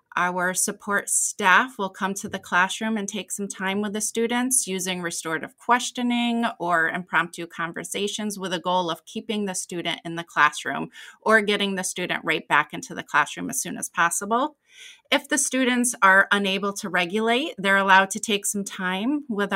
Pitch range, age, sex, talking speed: 175-220 Hz, 30-49, female, 180 wpm